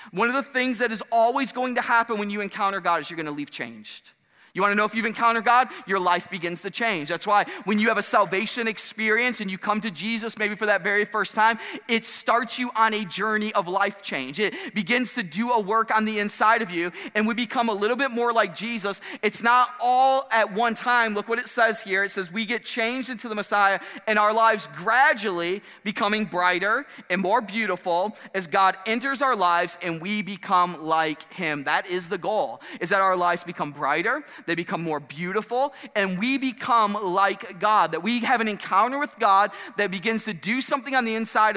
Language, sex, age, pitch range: English, male, 30-49, 180-235 Hz